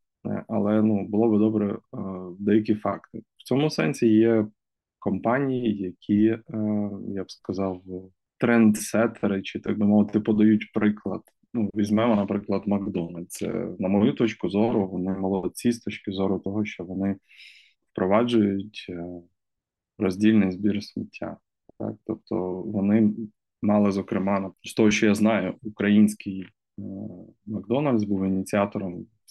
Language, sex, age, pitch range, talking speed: Ukrainian, male, 20-39, 95-110 Hz, 115 wpm